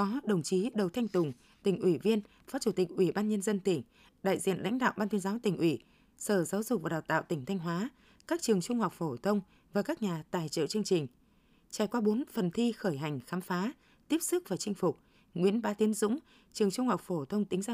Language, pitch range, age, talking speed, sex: Vietnamese, 180-225 Hz, 20-39, 245 wpm, female